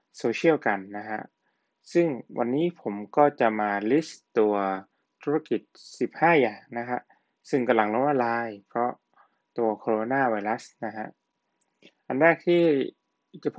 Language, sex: Thai, male